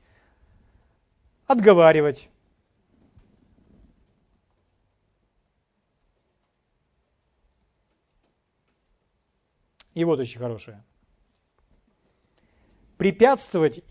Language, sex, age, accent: Ukrainian, male, 40-59, native